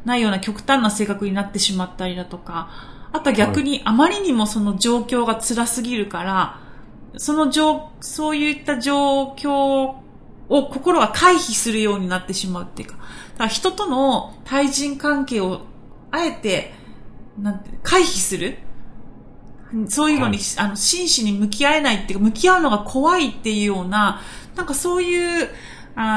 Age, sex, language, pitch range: 40-59, female, Japanese, 200-275 Hz